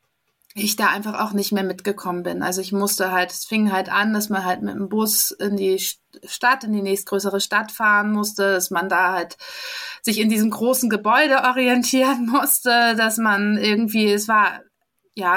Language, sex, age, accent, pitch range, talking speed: German, female, 20-39, German, 200-230 Hz, 185 wpm